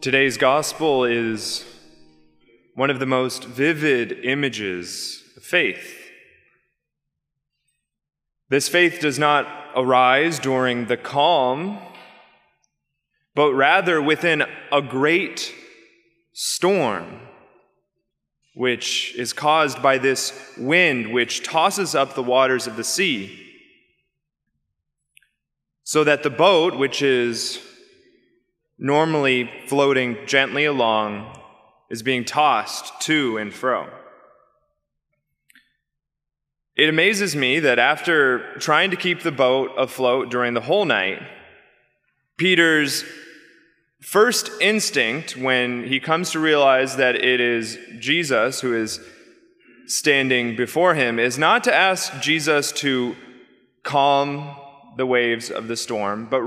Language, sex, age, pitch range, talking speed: English, male, 20-39, 125-160 Hz, 105 wpm